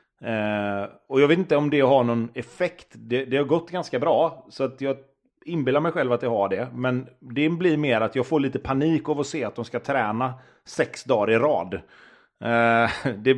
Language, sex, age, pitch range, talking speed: English, male, 30-49, 110-140 Hz, 215 wpm